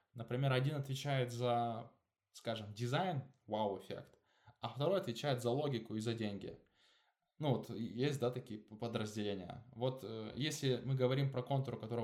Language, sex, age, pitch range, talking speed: Russian, male, 20-39, 110-135 Hz, 150 wpm